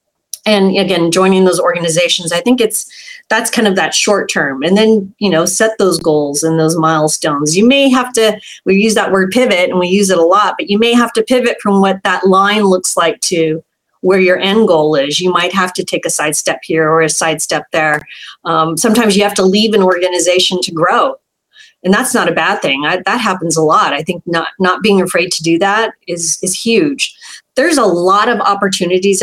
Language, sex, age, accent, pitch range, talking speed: English, female, 30-49, American, 170-215 Hz, 220 wpm